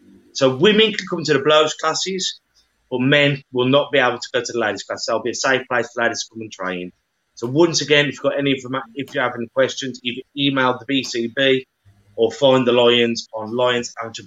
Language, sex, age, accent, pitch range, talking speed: English, male, 30-49, British, 120-145 Hz, 235 wpm